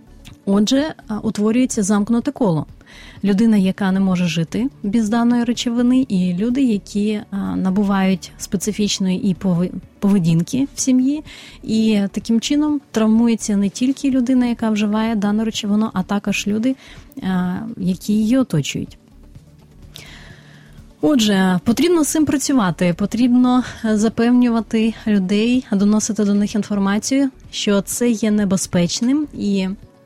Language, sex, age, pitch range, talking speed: Ukrainian, female, 30-49, 190-230 Hz, 110 wpm